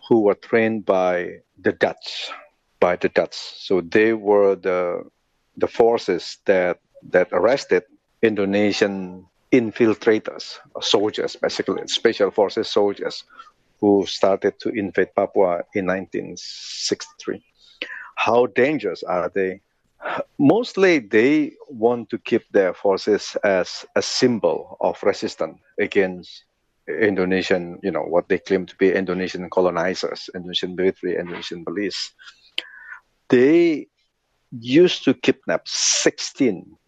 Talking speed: 110 wpm